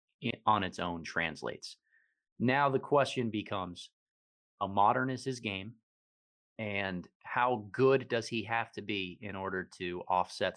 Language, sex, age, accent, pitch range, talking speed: English, male, 30-49, American, 90-115 Hz, 140 wpm